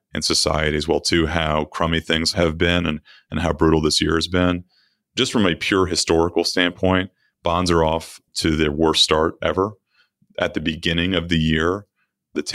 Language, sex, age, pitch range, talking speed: English, male, 30-49, 80-90 Hz, 185 wpm